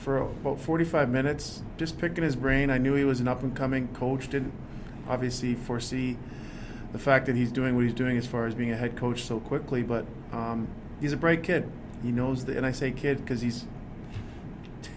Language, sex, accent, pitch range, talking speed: English, male, American, 120-135 Hz, 205 wpm